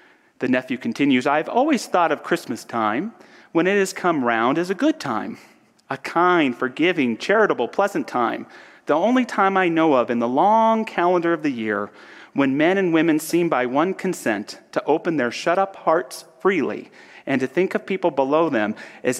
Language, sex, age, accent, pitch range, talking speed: English, male, 30-49, American, 125-185 Hz, 190 wpm